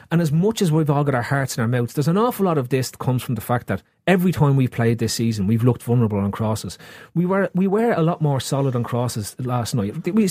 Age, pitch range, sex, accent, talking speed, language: 30-49, 125-170 Hz, male, Irish, 280 wpm, English